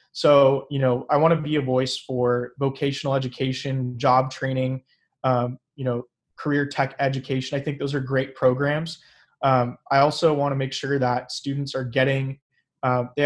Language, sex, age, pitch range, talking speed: English, male, 20-39, 125-145 Hz, 170 wpm